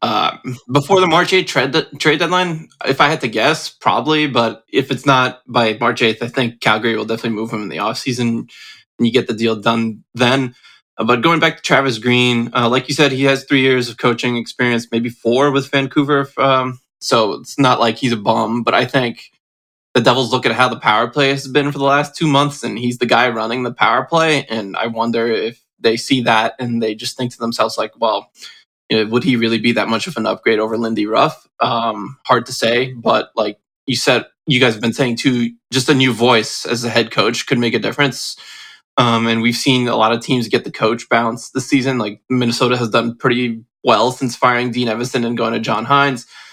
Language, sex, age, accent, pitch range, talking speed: English, male, 20-39, American, 115-135 Hz, 225 wpm